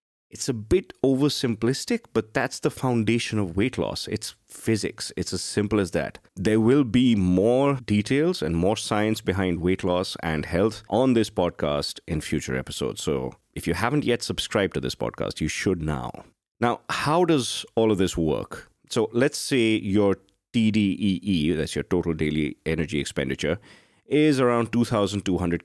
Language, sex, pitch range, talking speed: English, male, 90-120 Hz, 165 wpm